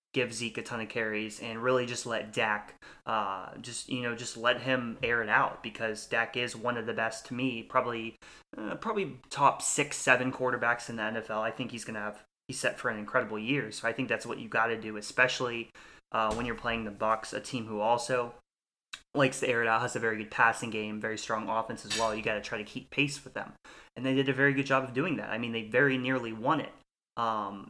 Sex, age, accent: male, 20-39, American